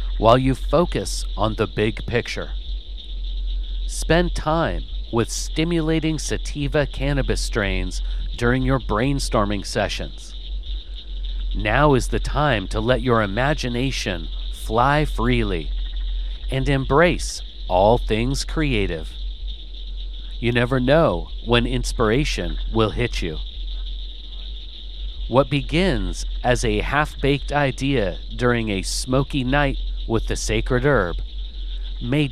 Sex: male